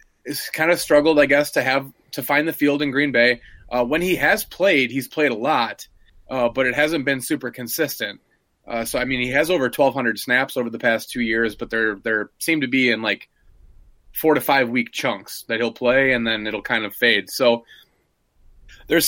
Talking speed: 215 wpm